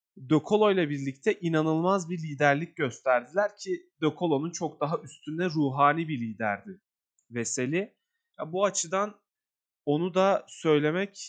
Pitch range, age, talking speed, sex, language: 135-190 Hz, 30-49, 115 wpm, male, Turkish